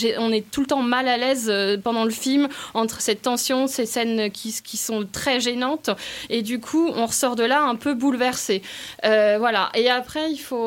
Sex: female